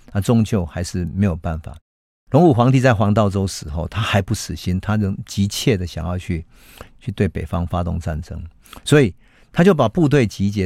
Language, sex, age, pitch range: Chinese, male, 50-69, 90-115 Hz